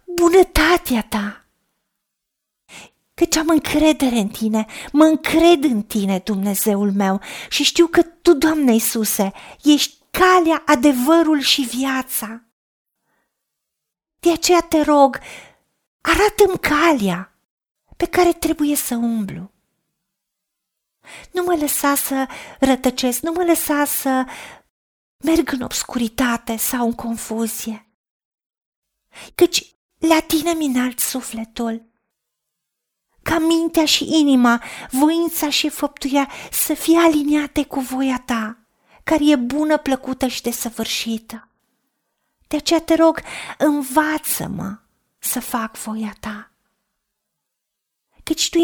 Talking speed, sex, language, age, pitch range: 105 wpm, female, Romanian, 40-59, 230-315 Hz